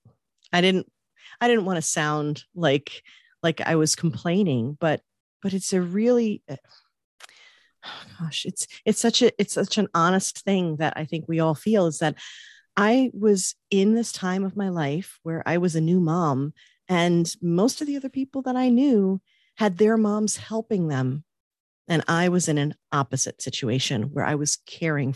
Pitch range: 160-205 Hz